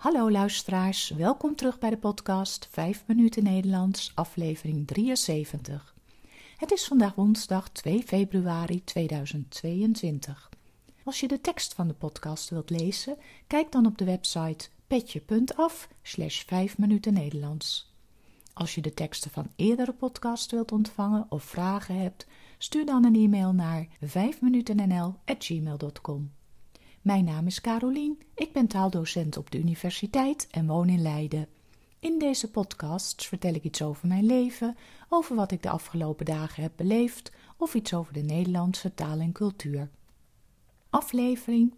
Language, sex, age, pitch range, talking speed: Dutch, female, 40-59, 160-225 Hz, 140 wpm